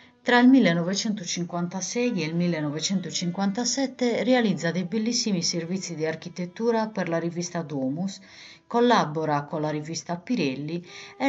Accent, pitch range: native, 150-235 Hz